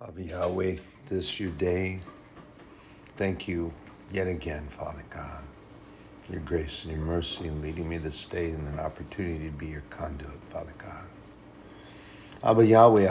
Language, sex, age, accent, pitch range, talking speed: English, male, 60-79, American, 85-100 Hz, 150 wpm